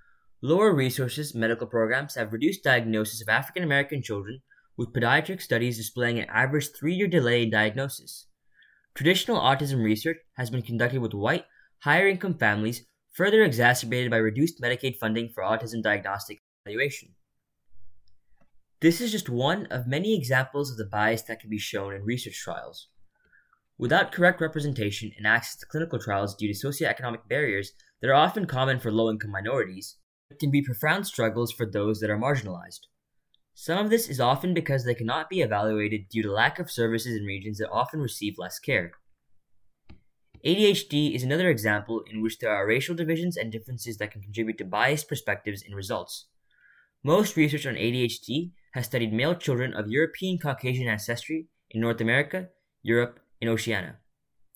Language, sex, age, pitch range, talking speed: English, male, 20-39, 110-155 Hz, 160 wpm